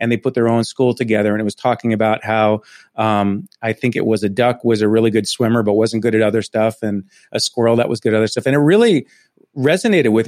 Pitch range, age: 110-155 Hz, 40-59